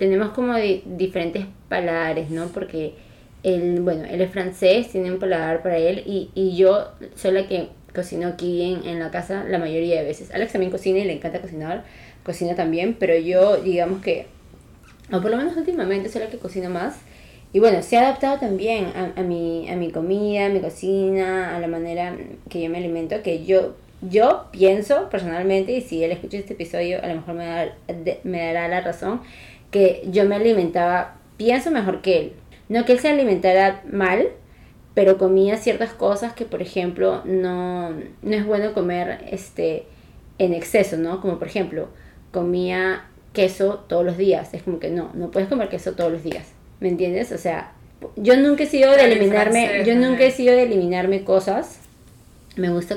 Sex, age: female, 20-39